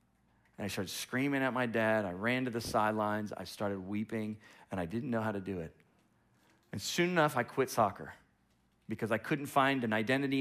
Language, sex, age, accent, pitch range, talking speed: English, male, 30-49, American, 90-125 Hz, 200 wpm